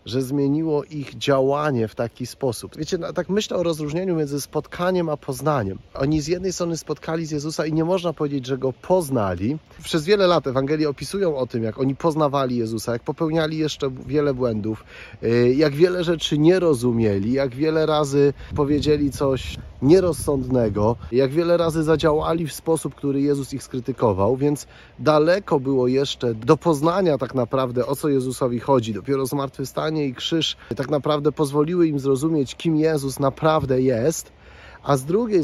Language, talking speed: Polish, 165 wpm